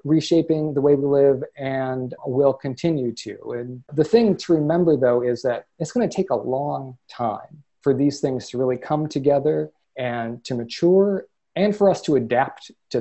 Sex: male